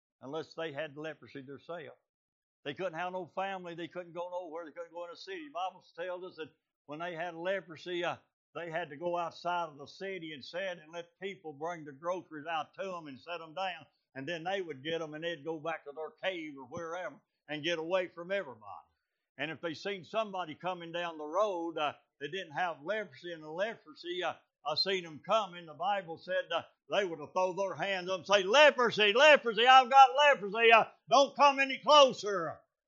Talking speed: 215 wpm